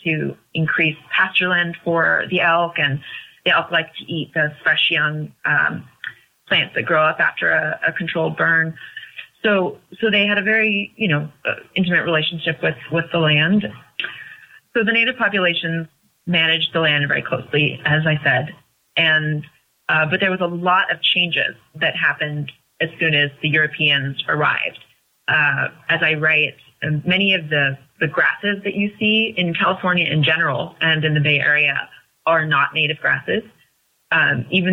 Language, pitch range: English, 150-175 Hz